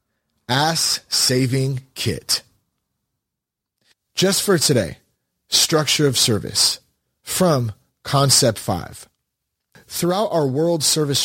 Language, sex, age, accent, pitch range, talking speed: English, male, 30-49, American, 115-160 Hz, 85 wpm